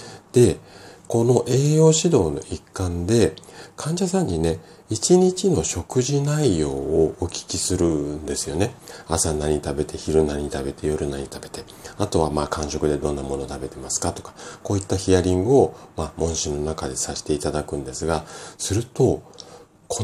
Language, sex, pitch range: Japanese, male, 80-120 Hz